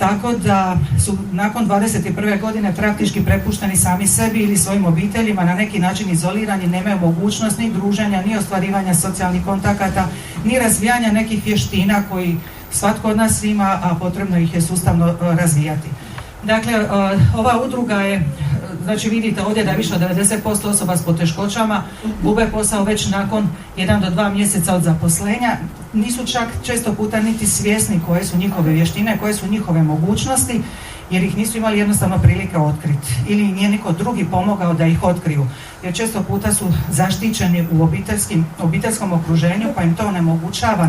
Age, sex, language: 40-59, female, Croatian